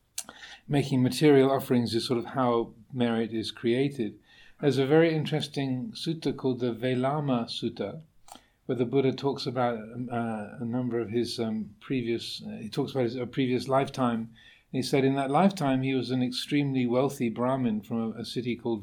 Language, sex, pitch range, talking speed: English, male, 115-130 Hz, 180 wpm